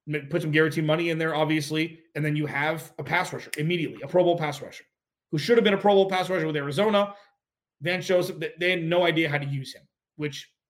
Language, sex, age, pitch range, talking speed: English, male, 30-49, 145-180 Hz, 240 wpm